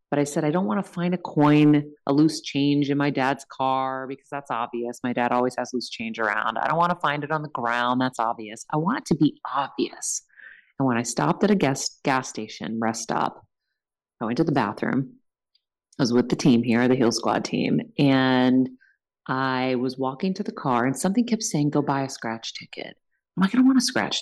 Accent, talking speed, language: American, 230 wpm, English